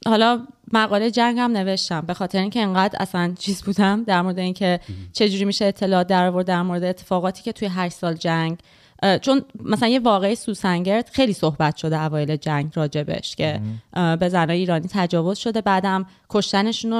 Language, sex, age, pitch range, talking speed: Persian, female, 30-49, 170-215 Hz, 160 wpm